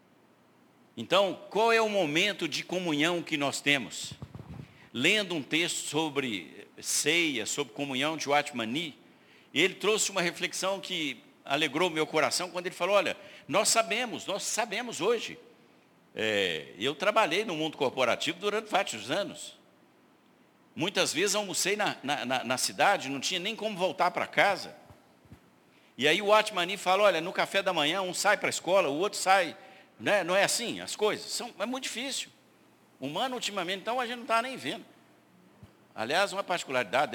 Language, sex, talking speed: Portuguese, male, 170 wpm